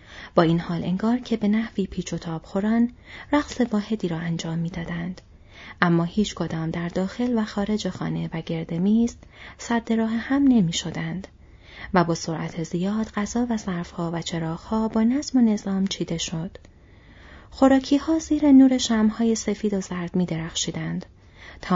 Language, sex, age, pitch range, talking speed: Persian, female, 30-49, 170-230 Hz, 155 wpm